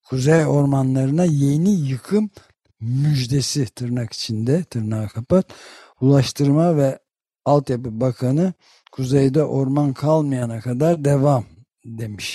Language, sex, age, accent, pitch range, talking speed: Turkish, male, 60-79, native, 125-150 Hz, 90 wpm